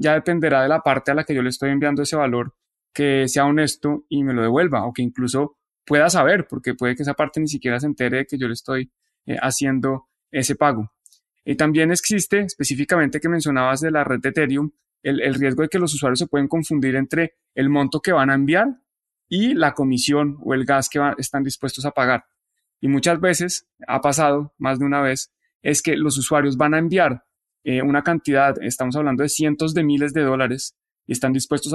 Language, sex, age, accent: Spanish, male, 20-39, Colombian